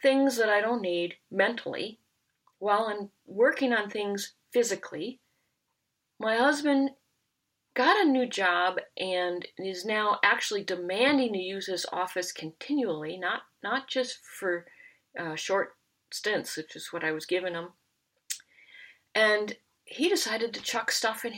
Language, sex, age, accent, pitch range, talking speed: English, female, 40-59, American, 185-260 Hz, 140 wpm